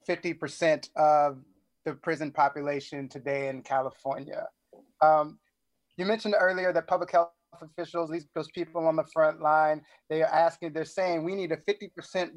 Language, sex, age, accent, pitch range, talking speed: English, male, 30-49, American, 160-210 Hz, 155 wpm